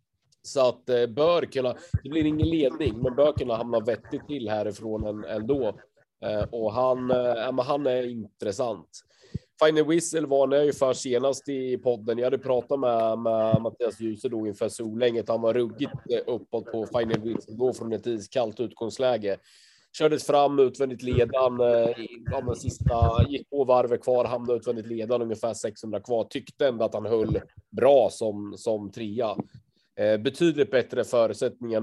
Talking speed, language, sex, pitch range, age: 140 wpm, Swedish, male, 110-135 Hz, 30-49